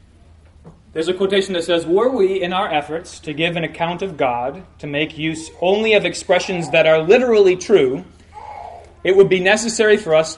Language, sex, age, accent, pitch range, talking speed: English, male, 30-49, American, 140-185 Hz, 185 wpm